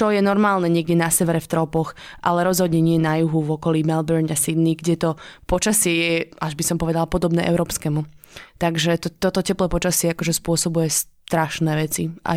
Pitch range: 165-185 Hz